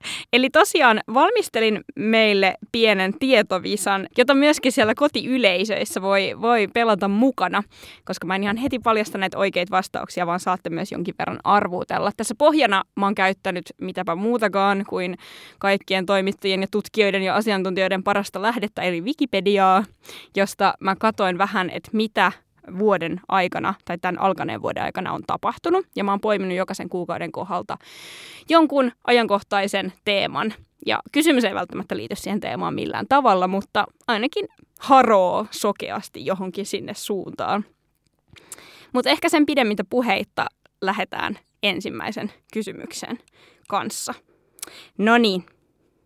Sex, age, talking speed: female, 20-39, 130 wpm